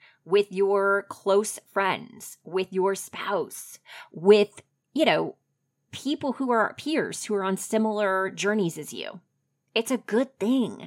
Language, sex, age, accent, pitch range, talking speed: English, female, 30-49, American, 165-205 Hz, 140 wpm